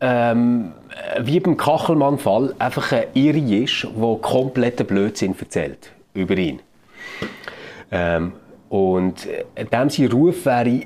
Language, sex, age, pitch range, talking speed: German, male, 30-49, 110-140 Hz, 105 wpm